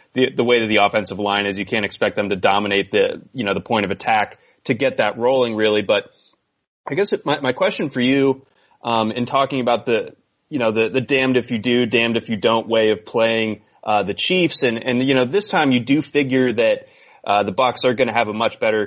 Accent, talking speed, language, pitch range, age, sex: American, 250 wpm, English, 110-130 Hz, 30-49, male